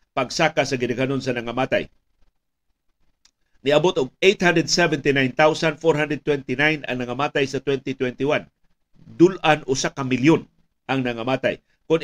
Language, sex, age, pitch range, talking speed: Filipino, male, 50-69, 135-165 Hz, 95 wpm